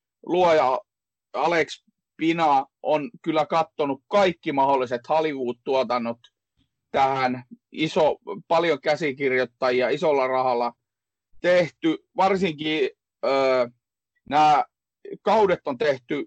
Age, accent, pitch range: 30-49, native, 125-160 Hz